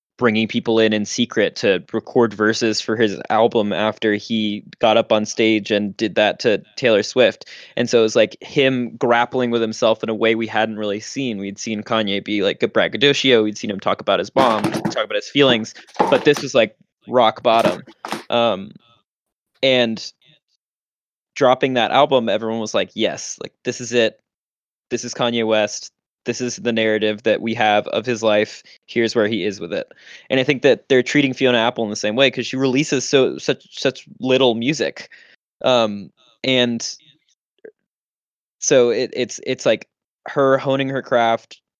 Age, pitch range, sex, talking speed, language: 20-39, 110-130 Hz, male, 180 wpm, English